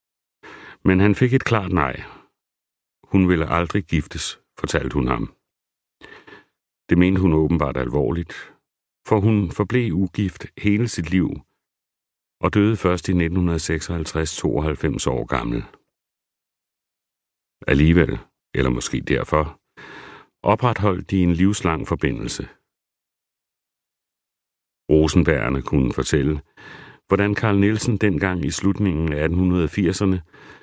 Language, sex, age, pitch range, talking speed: Danish, male, 60-79, 75-100 Hz, 100 wpm